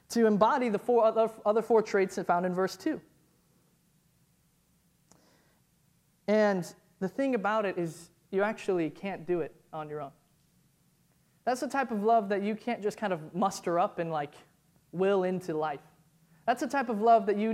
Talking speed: 180 wpm